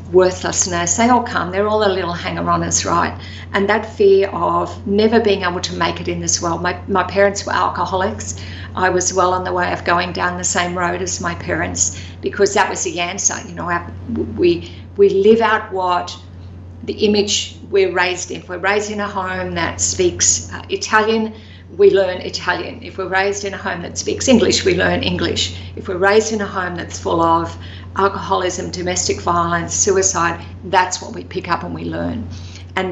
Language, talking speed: English, 195 wpm